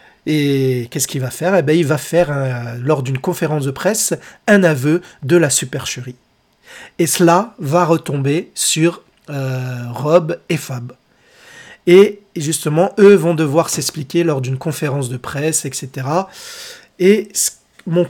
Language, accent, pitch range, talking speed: French, French, 150-195 Hz, 155 wpm